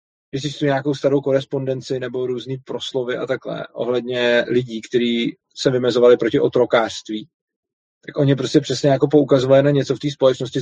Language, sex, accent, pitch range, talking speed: Czech, male, native, 125-140 Hz, 160 wpm